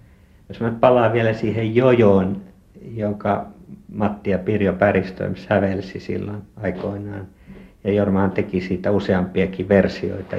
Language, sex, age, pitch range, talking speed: Finnish, male, 60-79, 95-105 Hz, 110 wpm